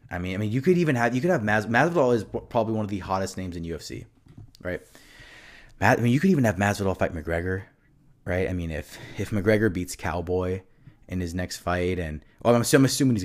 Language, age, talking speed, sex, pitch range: English, 20-39, 230 wpm, male, 90-120 Hz